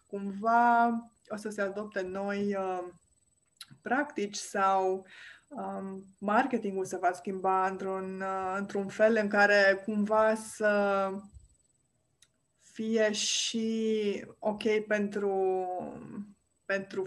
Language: Romanian